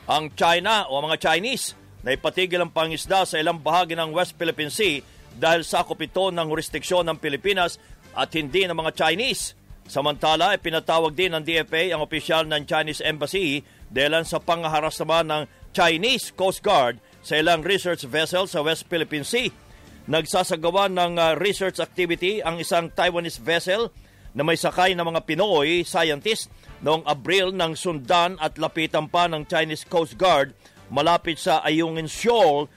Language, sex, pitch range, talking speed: English, male, 155-175 Hz, 150 wpm